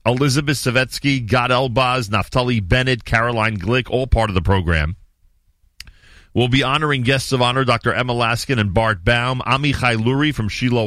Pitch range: 95-125 Hz